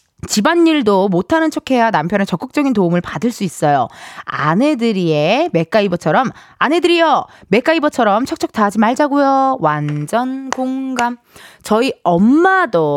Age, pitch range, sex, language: 20-39, 180-280 Hz, female, Korean